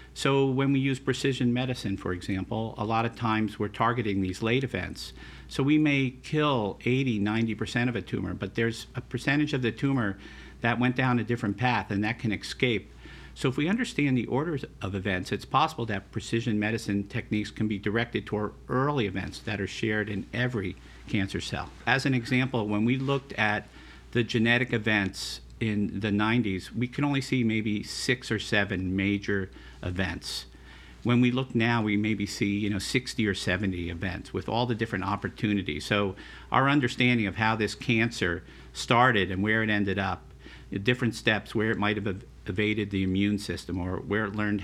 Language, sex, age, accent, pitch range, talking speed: English, male, 50-69, American, 95-120 Hz, 185 wpm